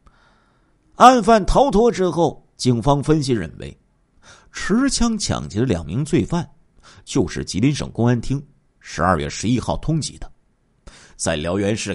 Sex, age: male, 50-69